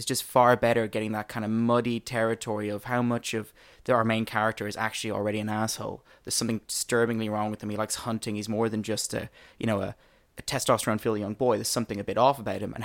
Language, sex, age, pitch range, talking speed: English, male, 20-39, 110-120 Hz, 245 wpm